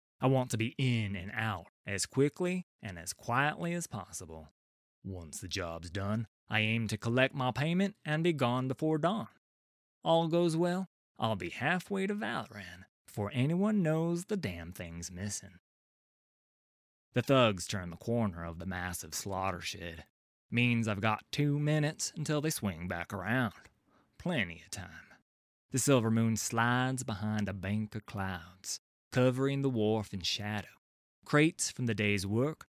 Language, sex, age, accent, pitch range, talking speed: English, male, 20-39, American, 90-130 Hz, 160 wpm